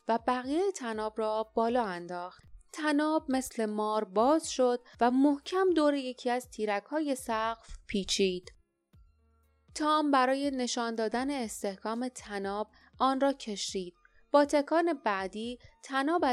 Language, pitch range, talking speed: Persian, 210-290 Hz, 120 wpm